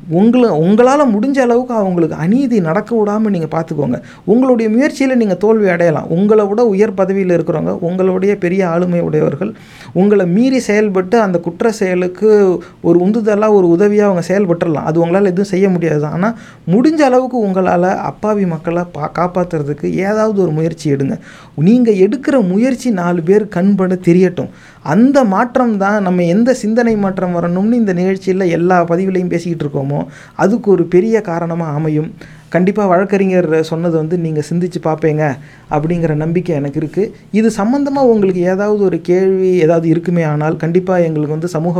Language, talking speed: English, 140 wpm